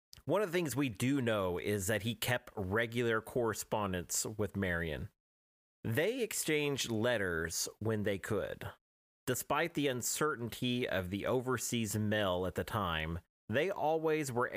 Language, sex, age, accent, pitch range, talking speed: English, male, 30-49, American, 90-130 Hz, 140 wpm